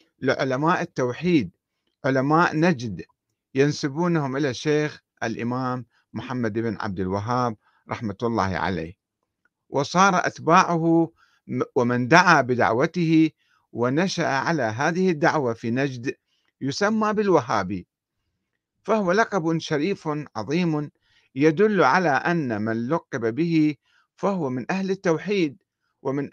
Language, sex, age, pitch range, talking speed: Arabic, male, 50-69, 120-165 Hz, 100 wpm